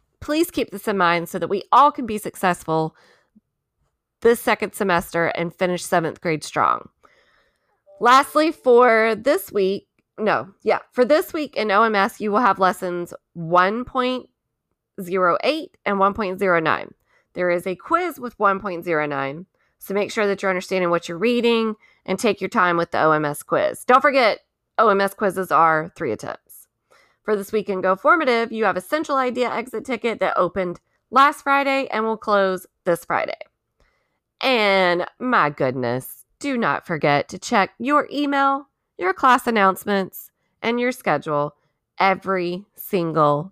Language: English